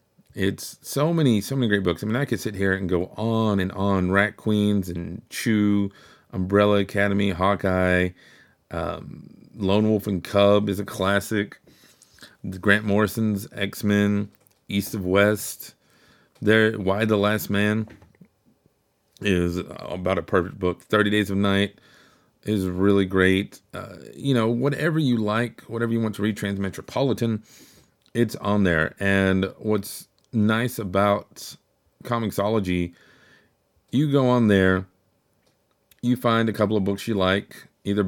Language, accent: English, American